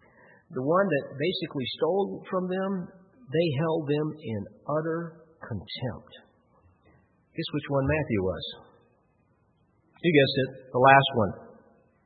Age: 50-69